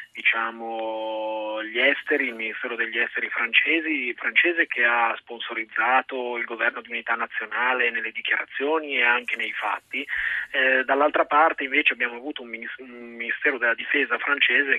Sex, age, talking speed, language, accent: male, 30-49, 140 wpm, Italian, native